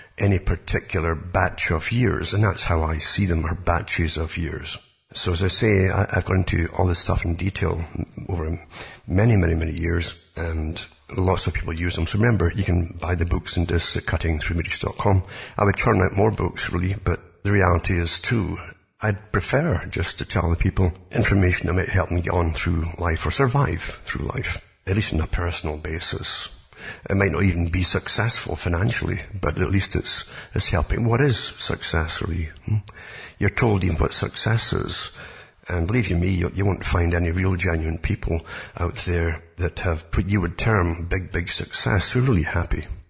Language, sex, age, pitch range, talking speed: English, male, 50-69, 85-100 Hz, 190 wpm